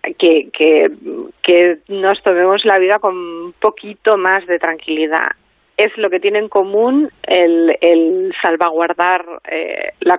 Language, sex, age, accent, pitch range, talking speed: Spanish, female, 30-49, Spanish, 170-200 Hz, 140 wpm